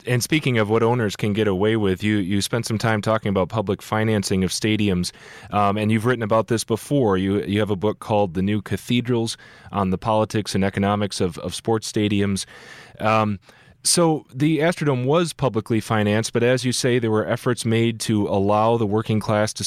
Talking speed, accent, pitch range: 200 wpm, American, 100-125 Hz